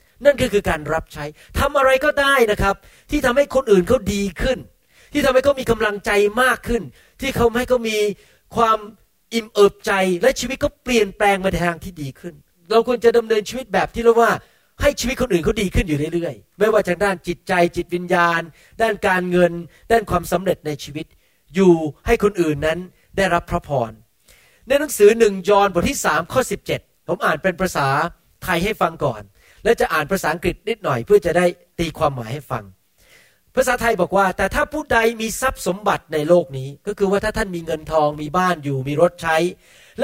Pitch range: 170-230 Hz